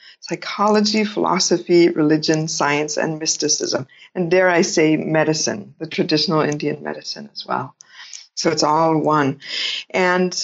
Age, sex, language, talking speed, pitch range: 60-79, female, English, 125 wpm, 170-205 Hz